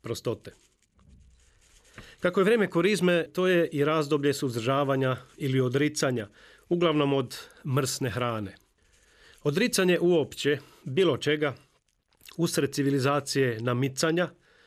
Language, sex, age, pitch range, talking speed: Croatian, male, 40-59, 130-170 Hz, 95 wpm